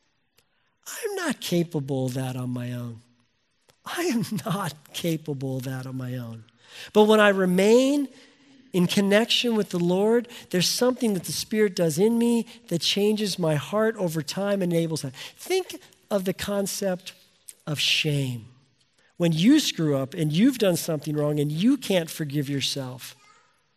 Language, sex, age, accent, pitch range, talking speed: English, male, 50-69, American, 150-215 Hz, 155 wpm